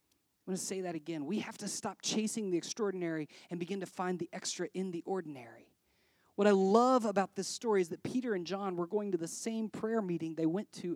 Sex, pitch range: male, 165-205 Hz